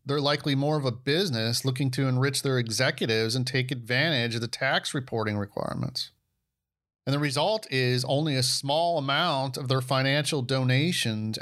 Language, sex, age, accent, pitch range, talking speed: English, male, 40-59, American, 120-150 Hz, 165 wpm